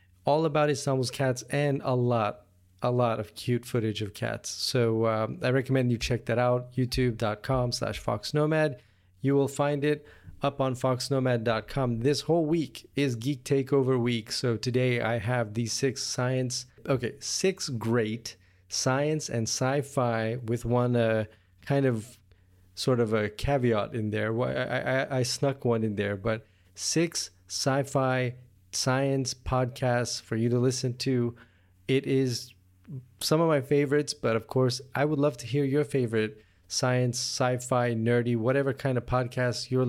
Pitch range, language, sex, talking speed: 115-135 Hz, English, male, 155 wpm